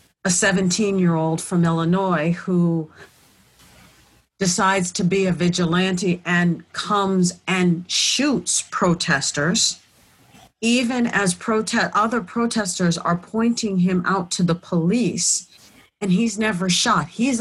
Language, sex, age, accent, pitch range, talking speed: English, female, 40-59, American, 175-215 Hz, 125 wpm